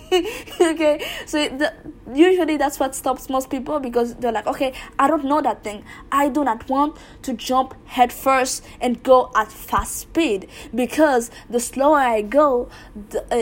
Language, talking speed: English, 185 wpm